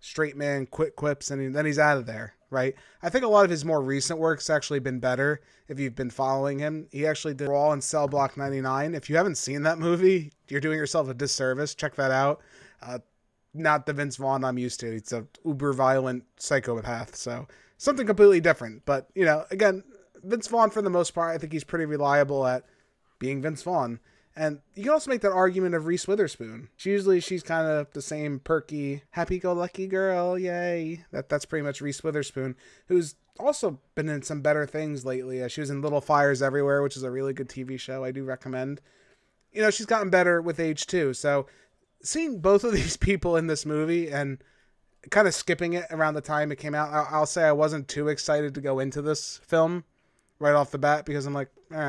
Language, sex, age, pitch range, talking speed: English, male, 20-39, 135-165 Hz, 210 wpm